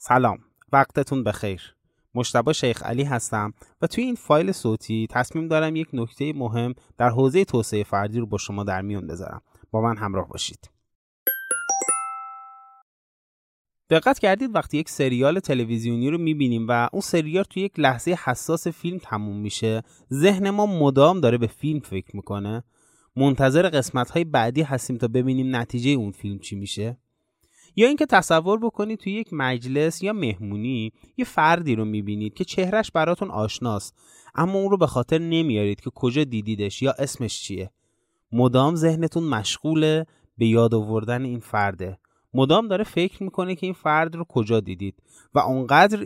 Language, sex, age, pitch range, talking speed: Persian, male, 30-49, 115-165 Hz, 150 wpm